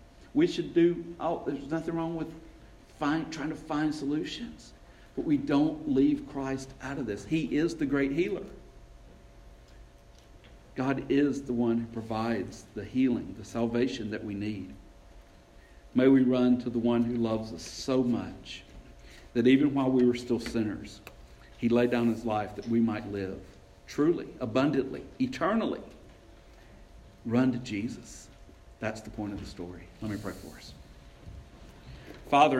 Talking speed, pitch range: 155 wpm, 105-135 Hz